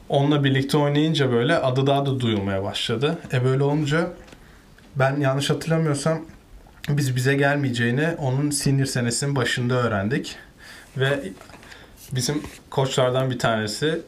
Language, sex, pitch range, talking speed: Turkish, male, 120-145 Hz, 125 wpm